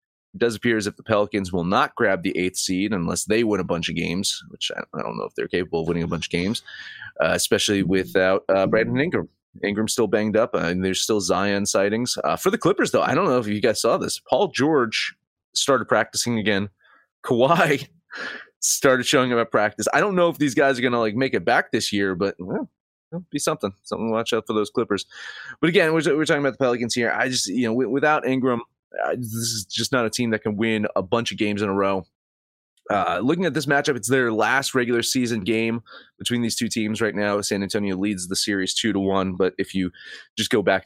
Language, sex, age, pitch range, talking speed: English, male, 30-49, 100-130 Hz, 240 wpm